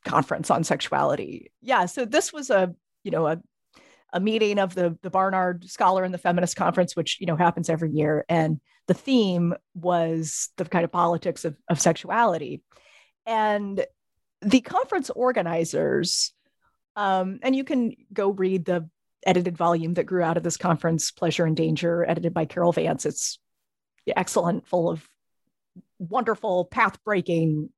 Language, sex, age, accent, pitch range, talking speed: English, female, 30-49, American, 165-220 Hz, 155 wpm